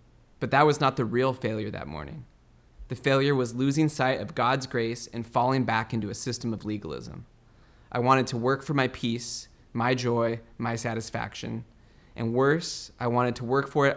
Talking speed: 190 wpm